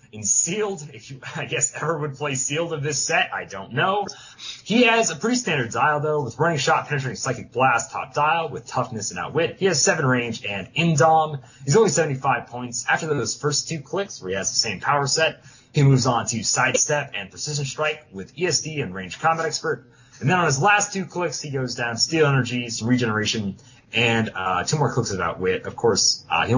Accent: American